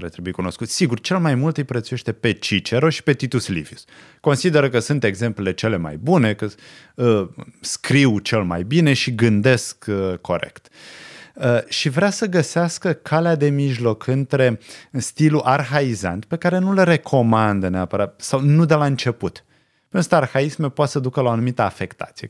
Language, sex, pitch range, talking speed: Romanian, male, 105-150 Hz, 165 wpm